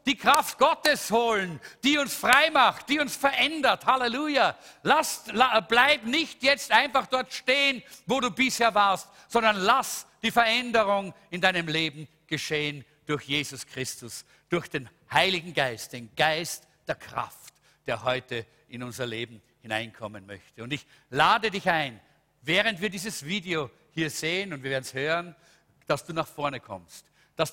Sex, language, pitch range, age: male, English, 155-245 Hz, 50-69